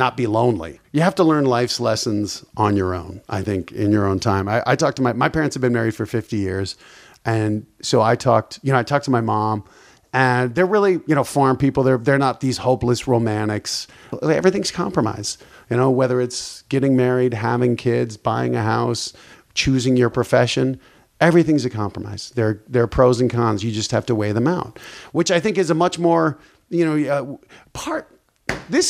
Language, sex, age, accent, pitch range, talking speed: English, male, 40-59, American, 115-155 Hz, 205 wpm